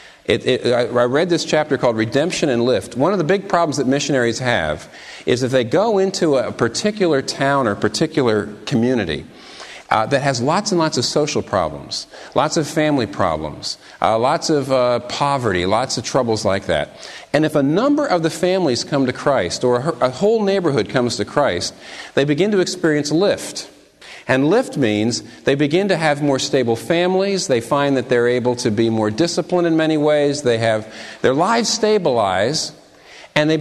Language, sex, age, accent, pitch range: Korean, male, 50-69, American, 120-160 Hz